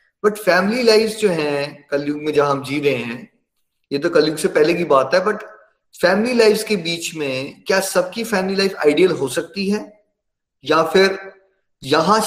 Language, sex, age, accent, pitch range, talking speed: Hindi, male, 20-39, native, 155-210 Hz, 180 wpm